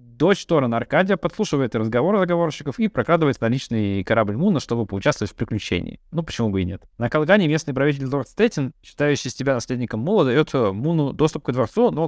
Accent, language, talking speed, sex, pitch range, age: native, Russian, 180 wpm, male, 115-160 Hz, 20-39